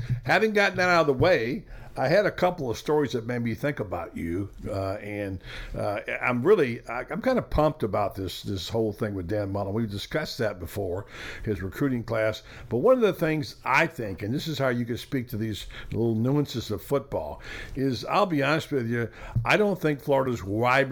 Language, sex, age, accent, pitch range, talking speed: English, male, 60-79, American, 110-140 Hz, 210 wpm